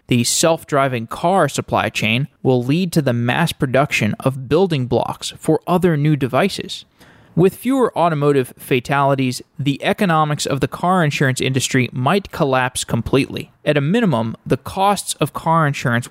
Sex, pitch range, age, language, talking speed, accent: male, 130-160 Hz, 20-39, English, 150 wpm, American